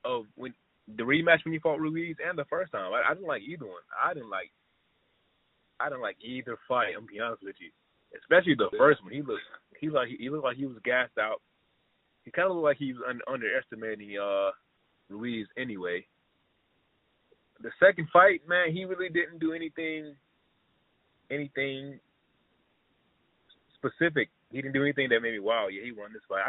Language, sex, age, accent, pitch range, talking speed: English, male, 20-39, American, 105-145 Hz, 195 wpm